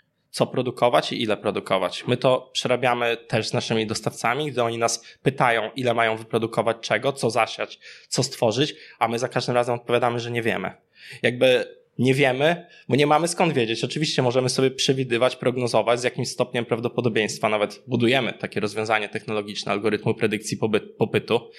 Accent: native